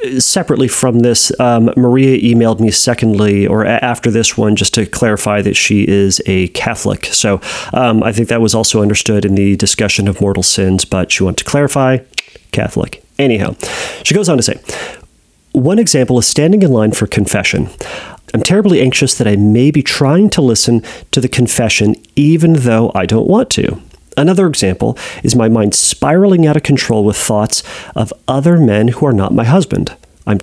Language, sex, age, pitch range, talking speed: English, male, 30-49, 105-145 Hz, 185 wpm